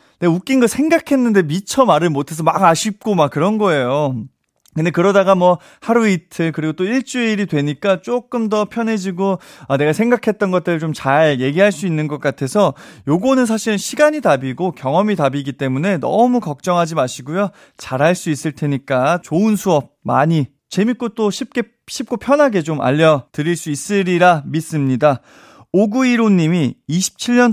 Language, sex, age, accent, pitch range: Korean, male, 30-49, native, 150-205 Hz